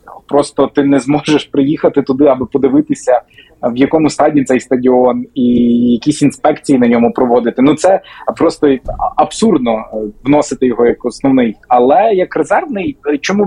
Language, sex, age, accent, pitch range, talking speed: Ukrainian, male, 20-39, native, 130-160 Hz, 140 wpm